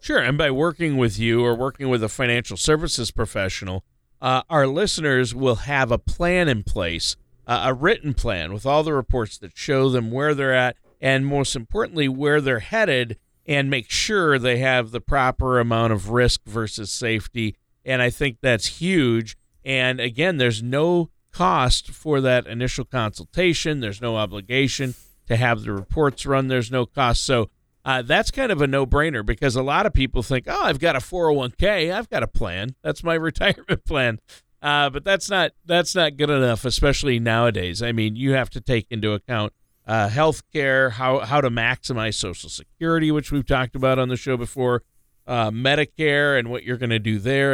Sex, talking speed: male, 190 wpm